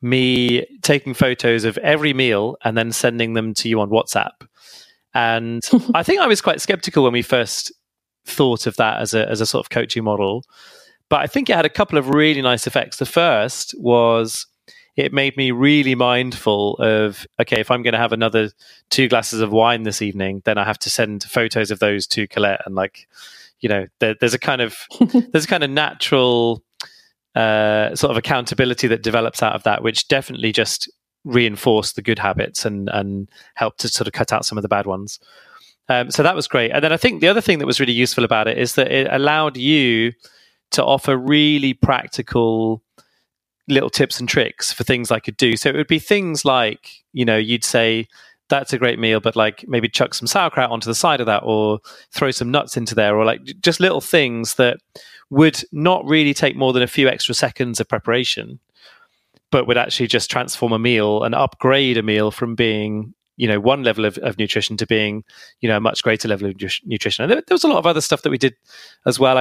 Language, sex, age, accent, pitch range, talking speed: English, male, 30-49, British, 110-135 Hz, 215 wpm